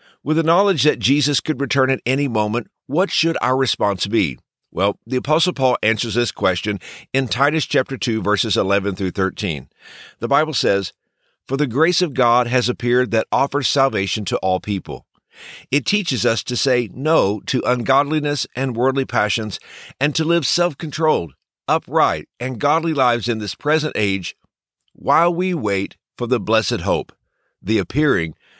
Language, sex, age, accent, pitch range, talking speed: English, male, 50-69, American, 110-150 Hz, 165 wpm